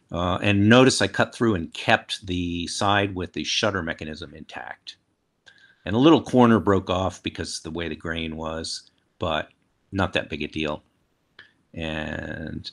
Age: 50-69